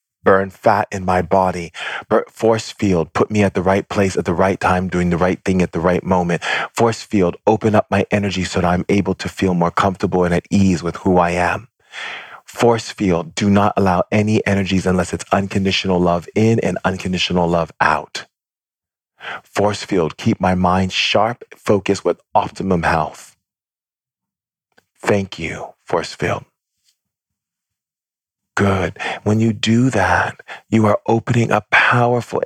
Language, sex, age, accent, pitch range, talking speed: English, male, 40-59, American, 95-115 Hz, 160 wpm